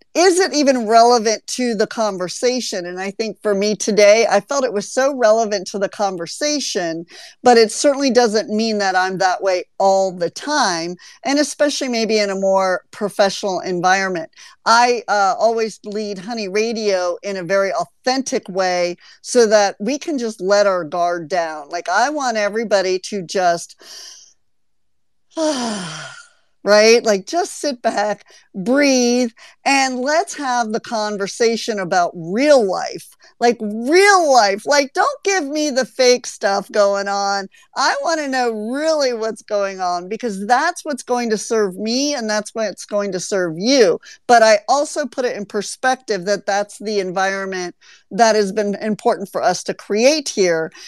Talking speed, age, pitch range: 160 wpm, 50-69, 200-260 Hz